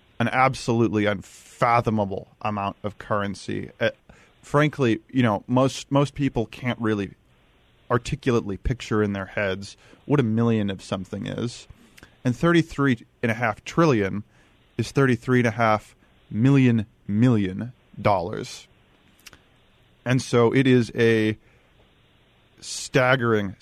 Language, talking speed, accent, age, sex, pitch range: English, 115 wpm, American, 30-49, male, 105-125 Hz